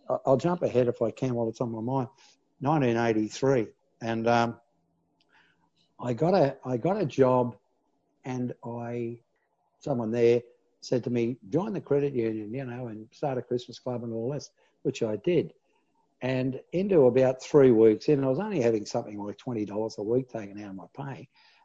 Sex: male